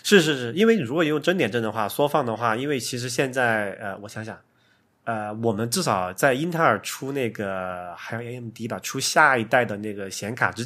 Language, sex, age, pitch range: Chinese, male, 20-39, 105-125 Hz